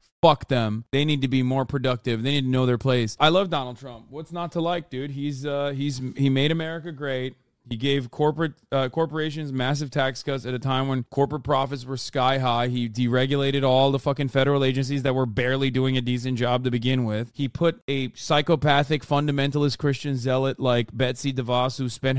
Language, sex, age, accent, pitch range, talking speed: English, male, 20-39, American, 125-145 Hz, 205 wpm